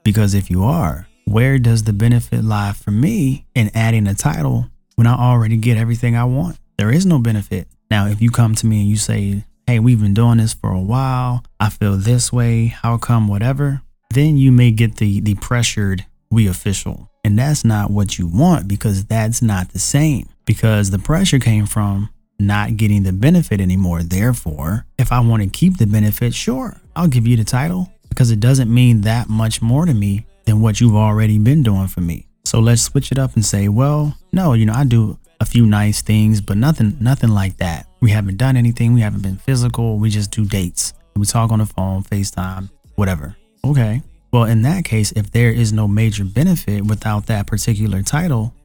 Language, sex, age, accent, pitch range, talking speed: English, male, 30-49, American, 105-120 Hz, 205 wpm